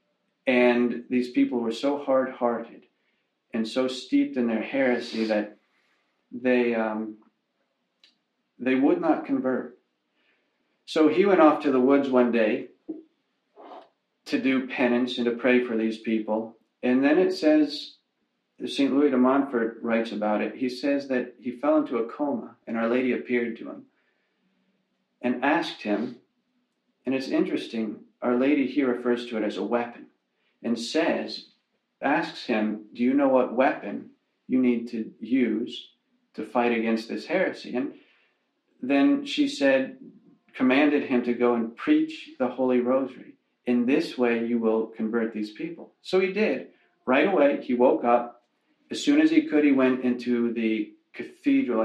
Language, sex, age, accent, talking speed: English, male, 40-59, American, 155 wpm